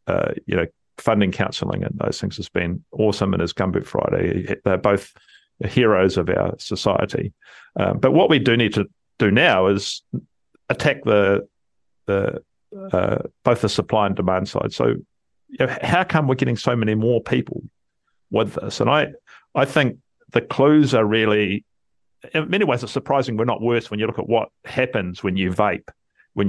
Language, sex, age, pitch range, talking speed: English, male, 50-69, 100-130 Hz, 180 wpm